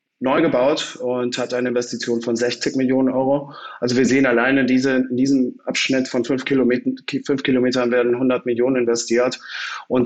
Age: 30-49